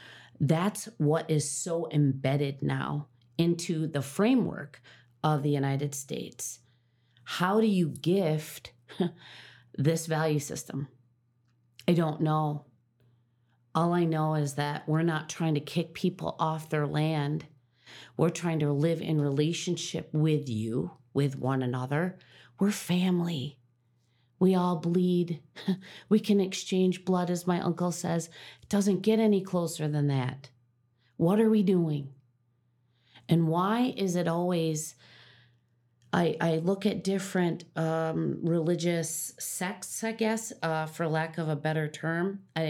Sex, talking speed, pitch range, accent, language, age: female, 130 wpm, 135-175 Hz, American, English, 40-59